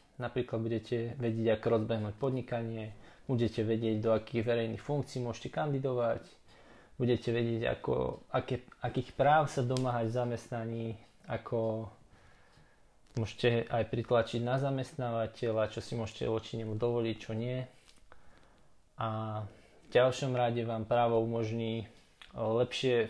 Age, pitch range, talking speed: 20-39, 110-125 Hz, 120 wpm